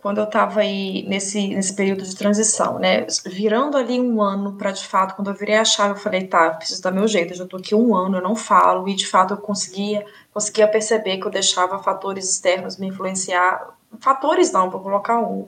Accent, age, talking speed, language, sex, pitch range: Brazilian, 20-39, 230 wpm, Portuguese, female, 205-235 Hz